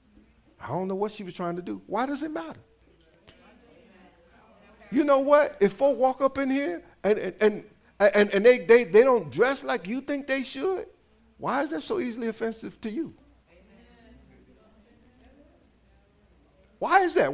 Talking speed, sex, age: 165 wpm, male, 60-79